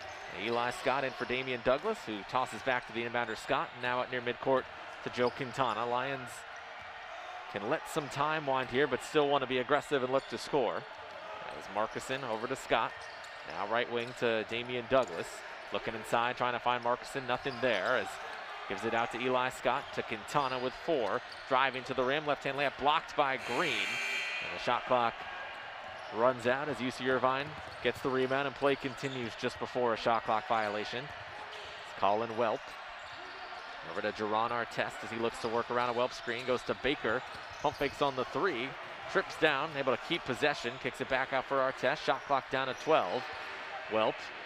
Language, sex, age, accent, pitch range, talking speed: English, male, 30-49, American, 120-130 Hz, 185 wpm